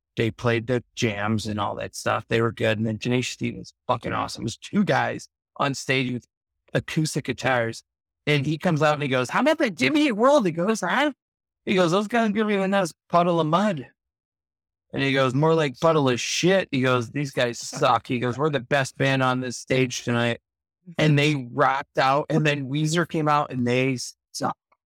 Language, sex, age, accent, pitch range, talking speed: English, male, 30-49, American, 120-185 Hz, 210 wpm